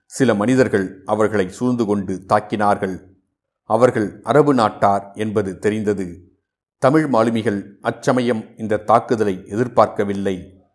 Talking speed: 95 wpm